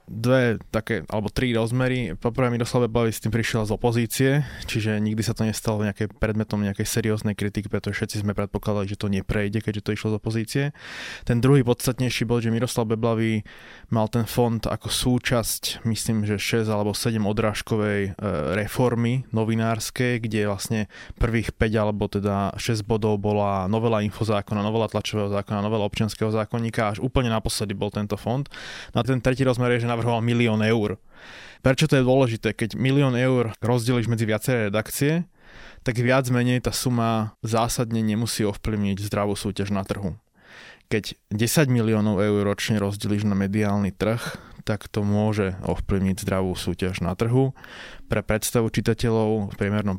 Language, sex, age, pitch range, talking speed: Slovak, male, 20-39, 100-115 Hz, 160 wpm